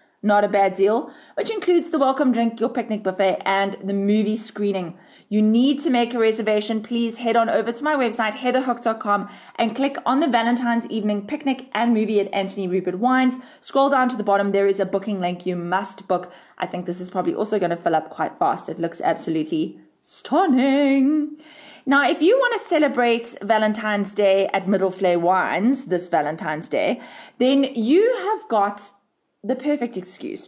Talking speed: 185 wpm